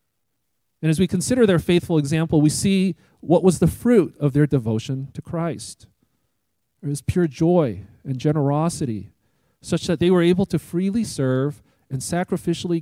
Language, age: English, 40-59